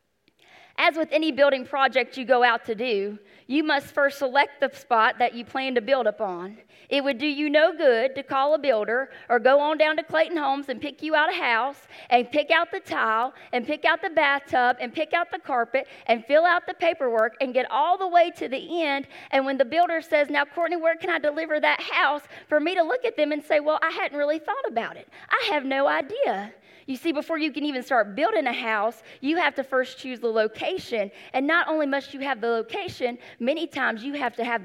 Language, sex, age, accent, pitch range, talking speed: English, female, 30-49, American, 250-310 Hz, 235 wpm